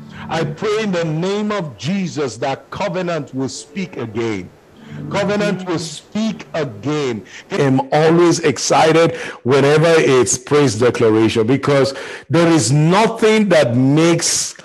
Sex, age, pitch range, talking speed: male, 50-69, 130-165 Hz, 120 wpm